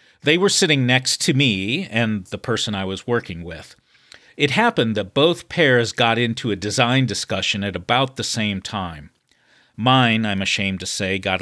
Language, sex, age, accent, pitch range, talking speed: English, male, 40-59, American, 100-140 Hz, 180 wpm